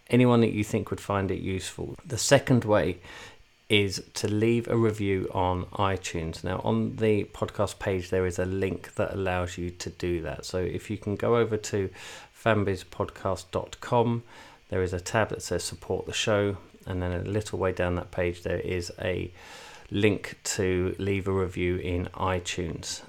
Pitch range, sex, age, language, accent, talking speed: 90-105 Hz, male, 30-49, English, British, 175 wpm